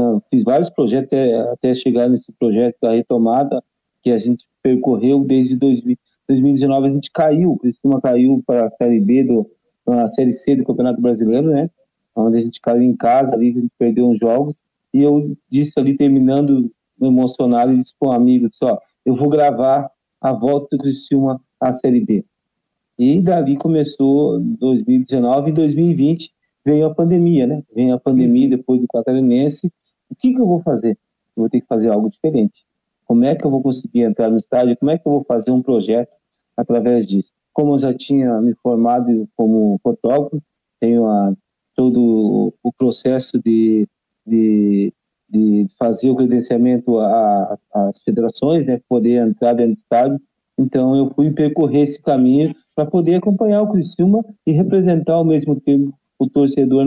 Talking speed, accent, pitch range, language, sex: 170 wpm, Brazilian, 120-145 Hz, Portuguese, male